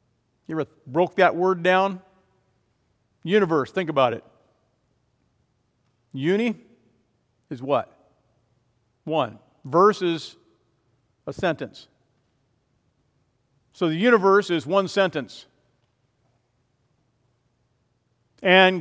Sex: male